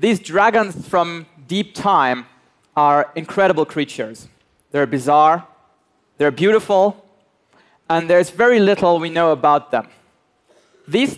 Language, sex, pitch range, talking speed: Russian, male, 145-180 Hz, 115 wpm